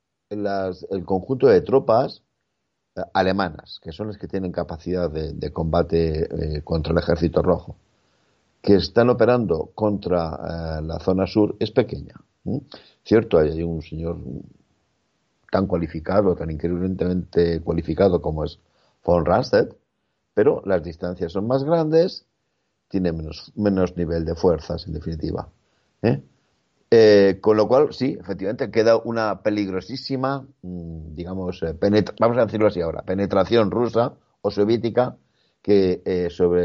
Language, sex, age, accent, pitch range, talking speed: Spanish, male, 60-79, Spanish, 85-110 Hz, 135 wpm